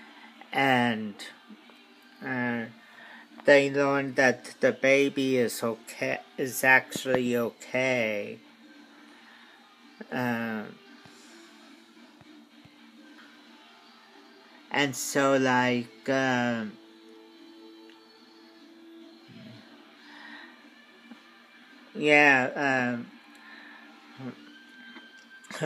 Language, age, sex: English, 50-69, male